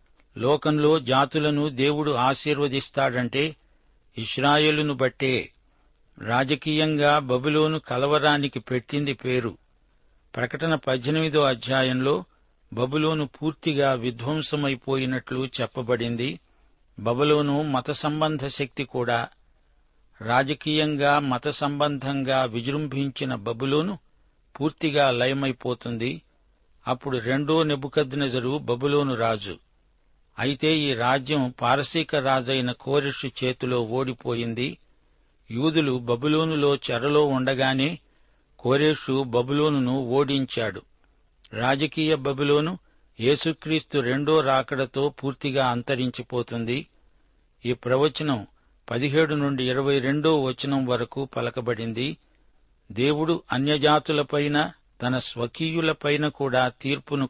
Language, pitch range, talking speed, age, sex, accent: Telugu, 125-150 Hz, 75 wpm, 60-79, male, native